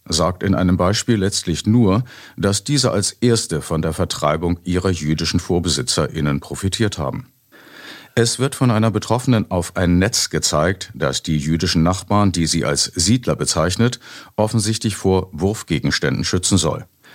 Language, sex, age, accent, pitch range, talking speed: German, male, 50-69, German, 80-110 Hz, 145 wpm